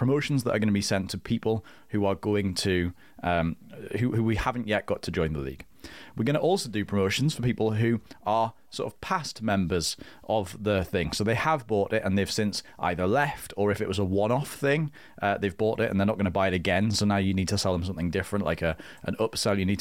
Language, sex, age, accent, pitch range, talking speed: English, male, 30-49, British, 95-115 Hz, 255 wpm